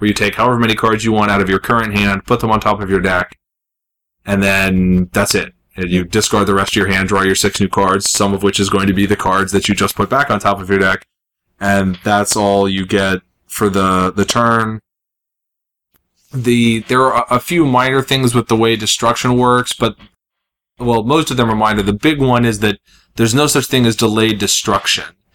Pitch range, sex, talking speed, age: 100-110 Hz, male, 225 wpm, 20-39